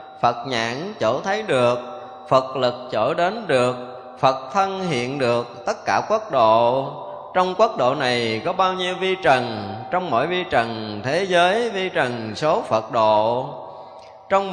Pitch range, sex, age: 105-155 Hz, male, 20-39